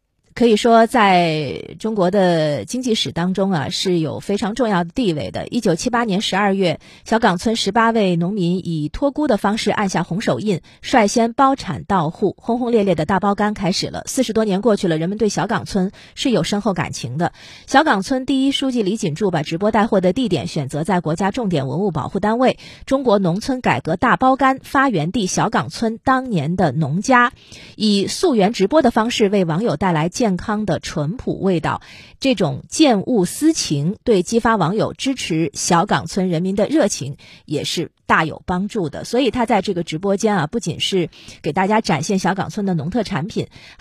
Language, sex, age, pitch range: Chinese, female, 30-49, 170-225 Hz